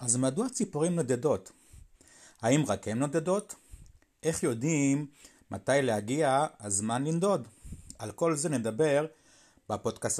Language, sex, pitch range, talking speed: Hebrew, male, 110-160 Hz, 110 wpm